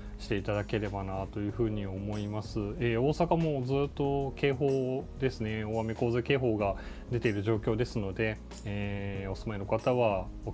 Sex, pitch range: male, 100-130 Hz